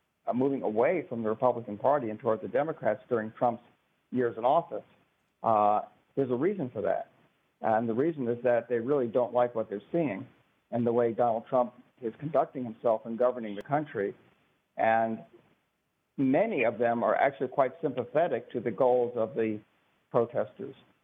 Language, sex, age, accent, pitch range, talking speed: English, male, 50-69, American, 110-125 Hz, 170 wpm